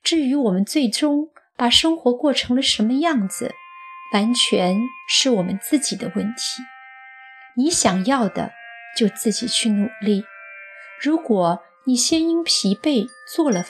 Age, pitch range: 30-49, 200-275 Hz